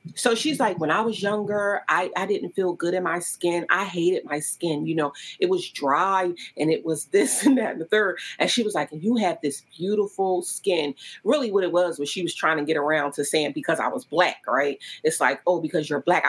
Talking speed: 245 wpm